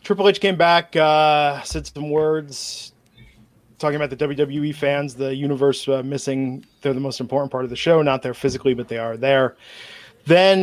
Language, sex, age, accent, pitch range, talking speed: English, male, 20-39, American, 135-155 Hz, 185 wpm